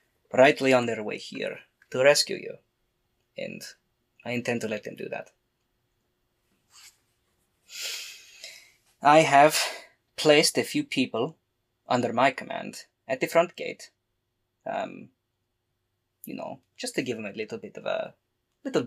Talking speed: 135 wpm